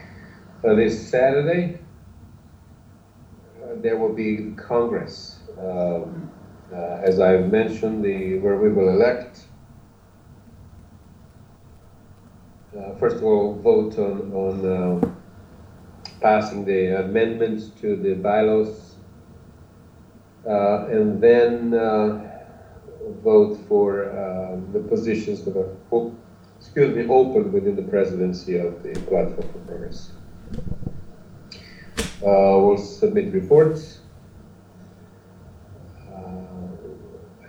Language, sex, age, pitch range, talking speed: English, male, 40-59, 90-115 Hz, 95 wpm